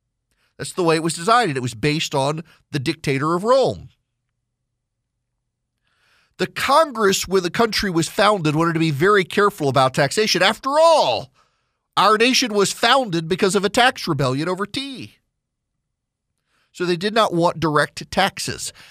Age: 40-59